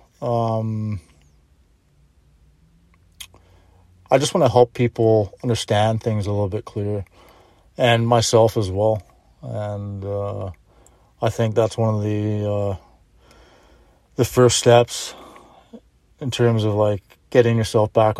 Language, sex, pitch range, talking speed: English, male, 100-120 Hz, 120 wpm